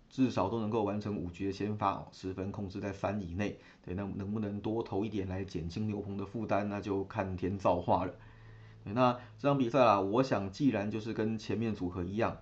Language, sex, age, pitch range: Chinese, male, 30-49, 95-110 Hz